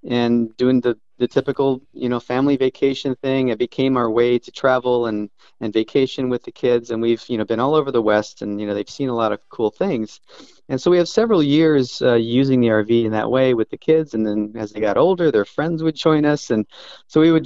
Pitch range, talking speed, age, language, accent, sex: 115-140 Hz, 250 wpm, 40-59, English, American, male